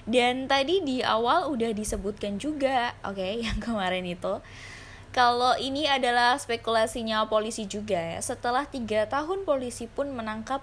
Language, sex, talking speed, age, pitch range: Indonesian, female, 140 wpm, 20-39, 170-235 Hz